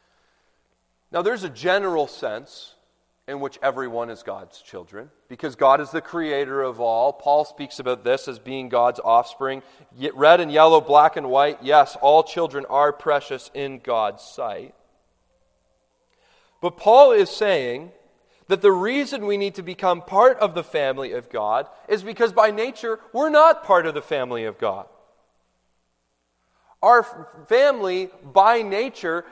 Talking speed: 150 wpm